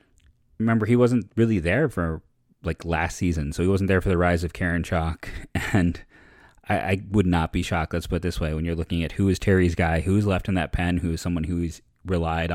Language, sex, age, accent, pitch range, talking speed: English, male, 30-49, American, 85-100 Hz, 230 wpm